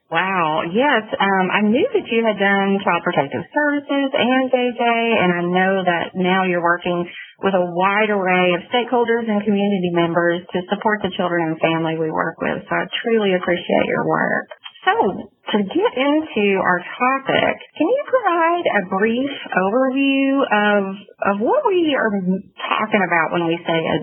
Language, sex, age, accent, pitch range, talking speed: English, female, 30-49, American, 190-230 Hz, 170 wpm